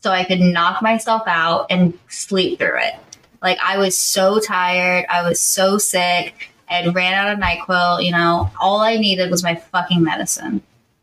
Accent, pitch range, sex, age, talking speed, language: American, 170-245 Hz, female, 20-39, 180 wpm, English